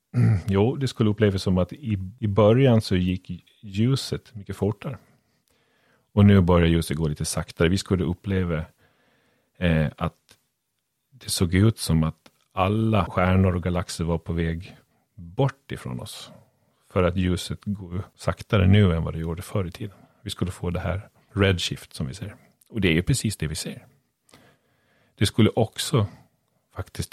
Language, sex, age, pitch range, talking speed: Swedish, male, 40-59, 85-105 Hz, 160 wpm